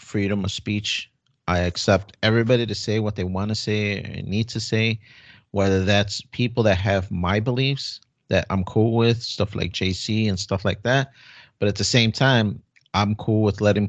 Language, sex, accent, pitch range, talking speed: English, male, American, 95-115 Hz, 190 wpm